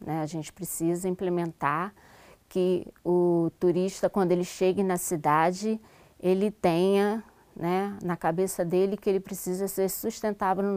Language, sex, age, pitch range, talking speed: Portuguese, female, 20-39, 185-215 Hz, 135 wpm